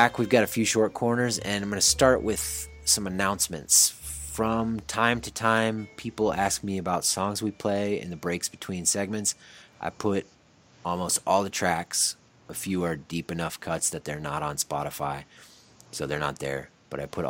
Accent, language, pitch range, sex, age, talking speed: American, English, 85-110 Hz, male, 30-49, 185 wpm